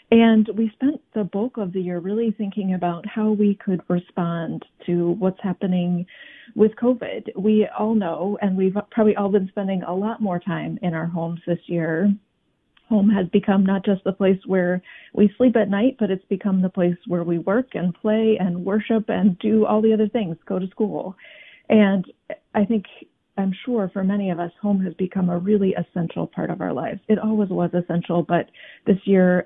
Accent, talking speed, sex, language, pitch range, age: American, 200 wpm, female, English, 180-215 Hz, 30-49